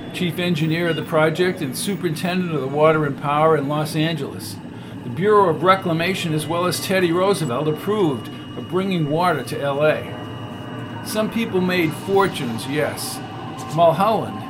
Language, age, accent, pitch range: English, 50-69, American, 145-185 Hz